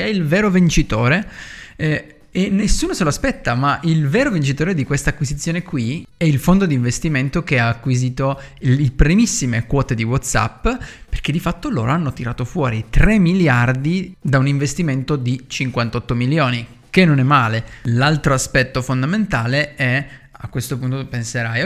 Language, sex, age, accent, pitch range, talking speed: Italian, male, 20-39, native, 125-160 Hz, 165 wpm